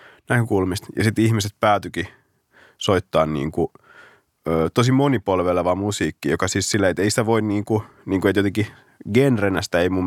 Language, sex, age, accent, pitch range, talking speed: Finnish, male, 30-49, native, 90-110 Hz, 145 wpm